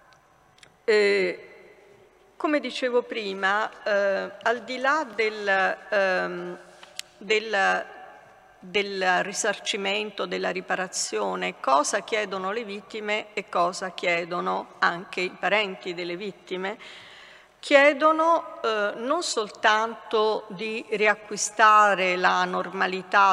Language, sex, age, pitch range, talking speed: Italian, female, 50-69, 190-250 Hz, 85 wpm